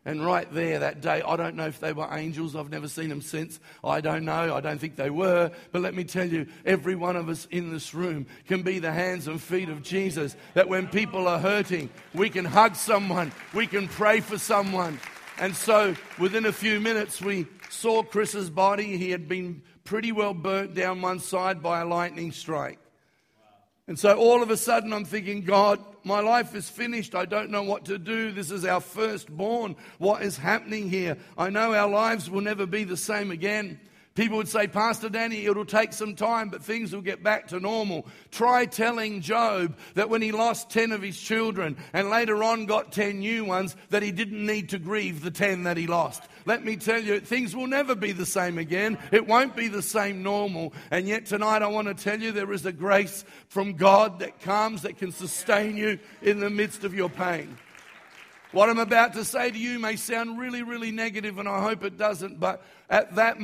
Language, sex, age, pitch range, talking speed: English, male, 50-69, 180-215 Hz, 215 wpm